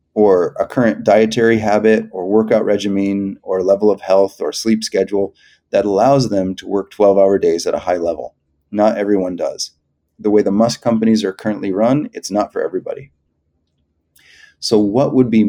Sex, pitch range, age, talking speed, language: male, 90-115 Hz, 30-49, 175 wpm, English